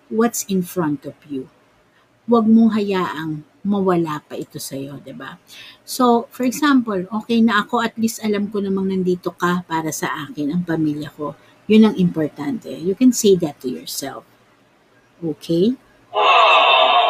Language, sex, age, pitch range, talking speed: Filipino, female, 50-69, 175-235 Hz, 150 wpm